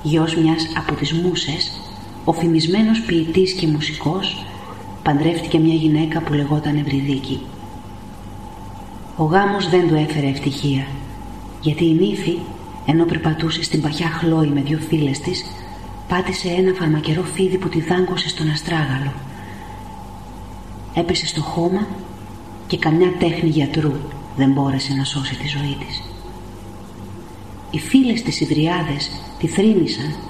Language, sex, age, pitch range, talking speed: Greek, female, 30-49, 135-170 Hz, 120 wpm